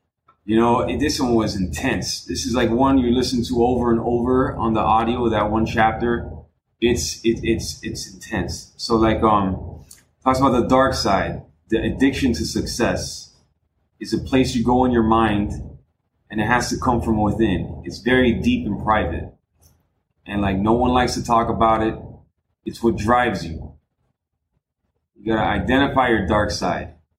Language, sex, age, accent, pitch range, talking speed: English, male, 20-39, American, 95-120 Hz, 180 wpm